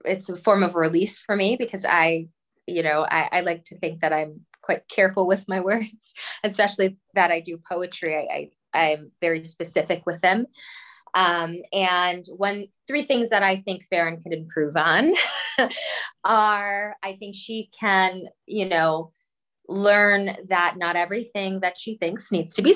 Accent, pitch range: American, 170-210 Hz